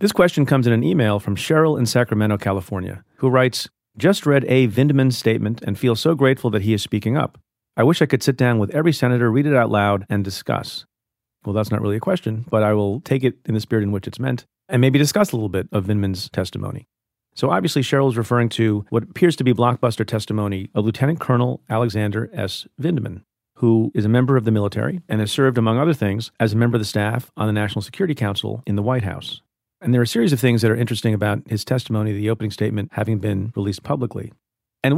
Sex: male